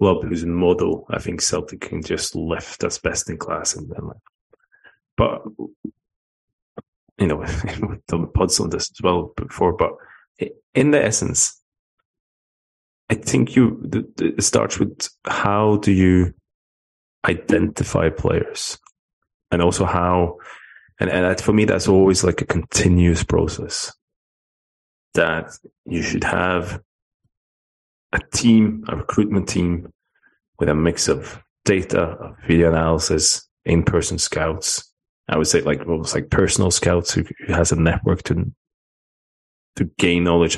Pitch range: 85-105 Hz